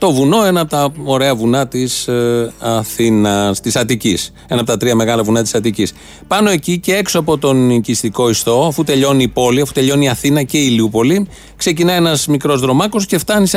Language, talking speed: Greek, 205 wpm